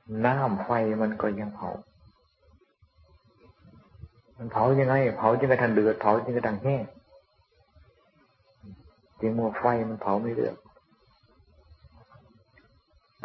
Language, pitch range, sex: Thai, 100-120 Hz, male